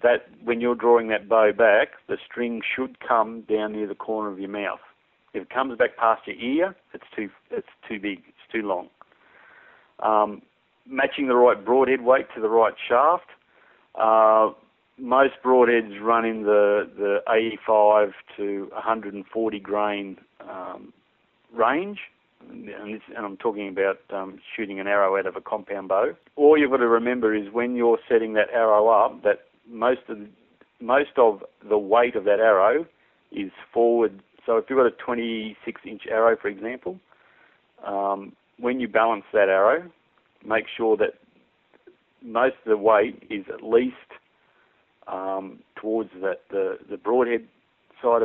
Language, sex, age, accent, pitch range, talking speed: English, male, 50-69, Australian, 105-120 Hz, 160 wpm